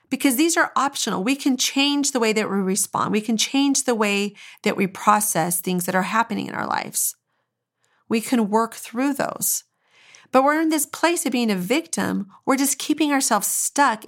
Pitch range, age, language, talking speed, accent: 205-275 Hz, 40-59, English, 195 wpm, American